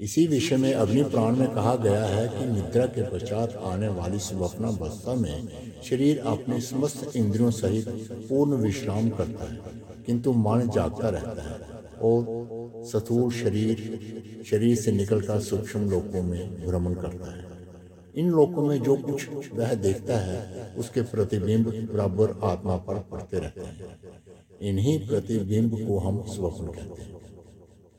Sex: male